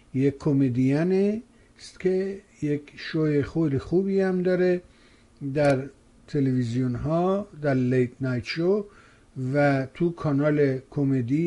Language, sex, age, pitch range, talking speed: Persian, male, 60-79, 130-170 Hz, 110 wpm